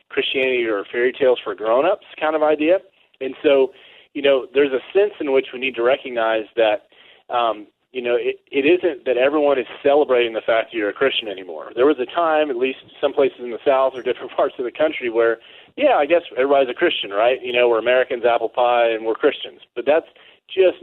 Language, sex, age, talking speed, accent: English, male, 30-49, 220 wpm, American